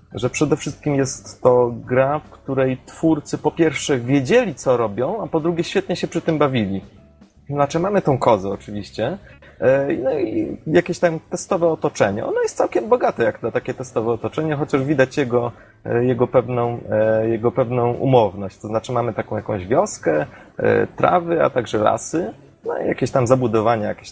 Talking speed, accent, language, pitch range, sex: 165 wpm, native, Polish, 115-155 Hz, male